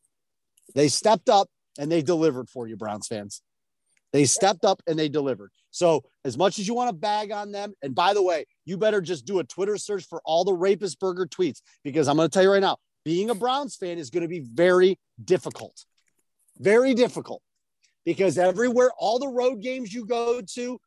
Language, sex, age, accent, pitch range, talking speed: English, male, 40-59, American, 155-220 Hz, 205 wpm